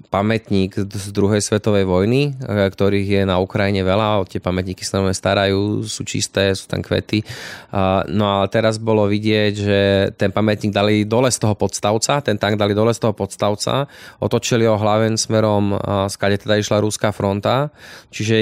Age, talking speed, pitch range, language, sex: 20-39, 160 wpm, 95-110 Hz, Slovak, male